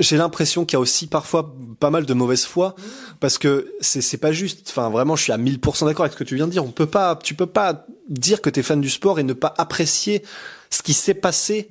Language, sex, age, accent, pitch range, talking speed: French, male, 20-39, French, 125-160 Hz, 260 wpm